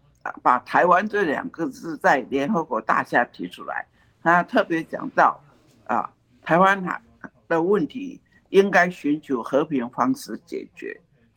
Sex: male